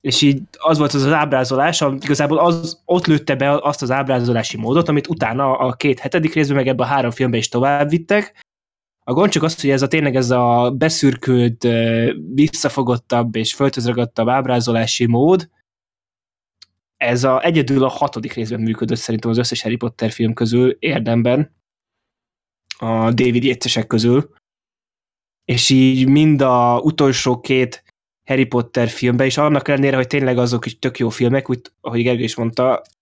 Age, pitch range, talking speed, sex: 20-39, 120-145 Hz, 160 wpm, male